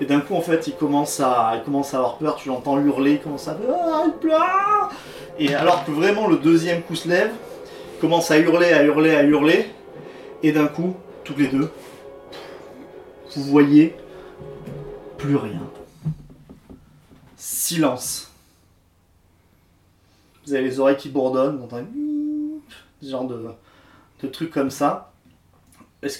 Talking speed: 150 wpm